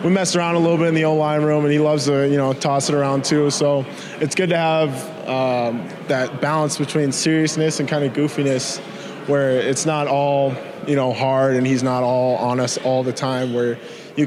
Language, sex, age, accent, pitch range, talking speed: English, male, 20-39, American, 115-135 Hz, 225 wpm